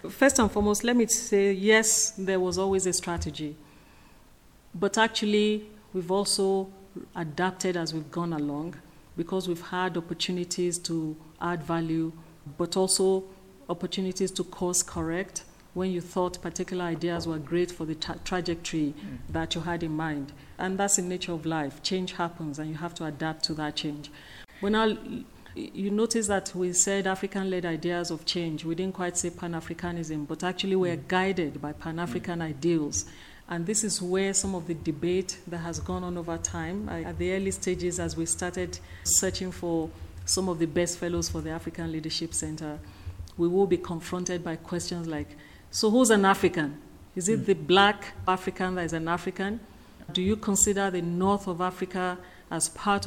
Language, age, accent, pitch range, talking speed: English, 40-59, Nigerian, 165-190 Hz, 170 wpm